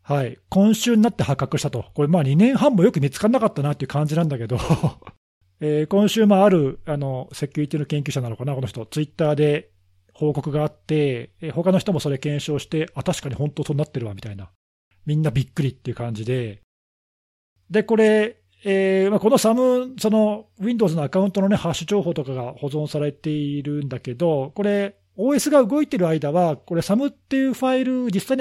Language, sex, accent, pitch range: Japanese, male, native, 130-215 Hz